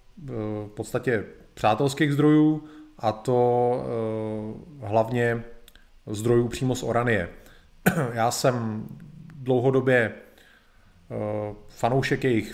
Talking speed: 75 wpm